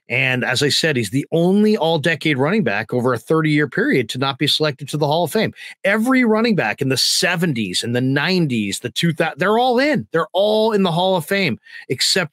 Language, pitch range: English, 130-180 Hz